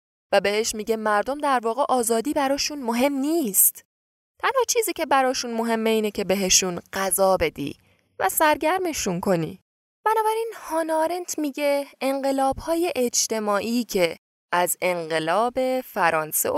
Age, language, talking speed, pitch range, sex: 10-29, Persian, 115 wpm, 200-280 Hz, female